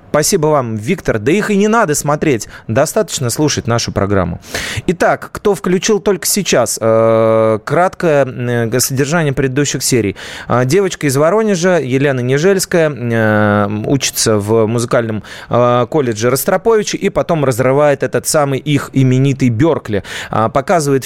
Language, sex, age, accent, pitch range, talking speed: Russian, male, 30-49, native, 110-160 Hz, 130 wpm